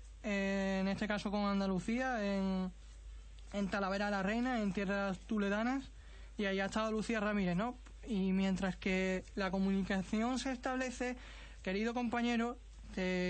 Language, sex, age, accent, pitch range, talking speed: Spanish, male, 20-39, Spanish, 190-220 Hz, 135 wpm